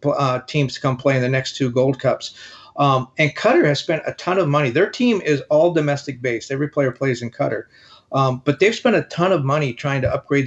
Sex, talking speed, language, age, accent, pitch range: male, 240 wpm, English, 40-59, American, 135-155 Hz